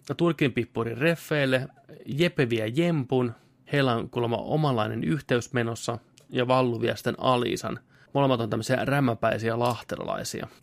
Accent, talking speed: native, 100 wpm